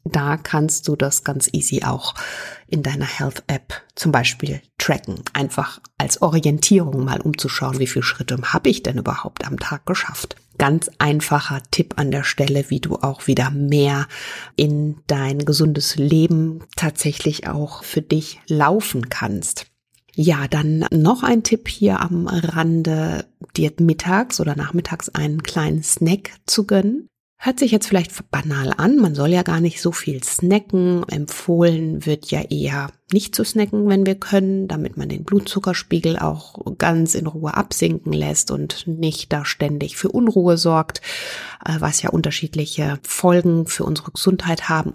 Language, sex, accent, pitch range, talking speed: German, female, German, 145-180 Hz, 155 wpm